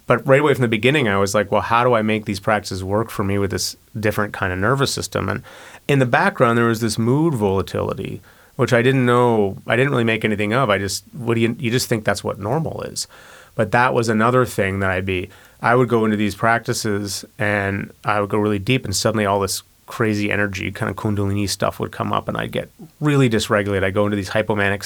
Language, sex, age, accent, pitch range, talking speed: English, male, 30-49, American, 100-120 Hz, 240 wpm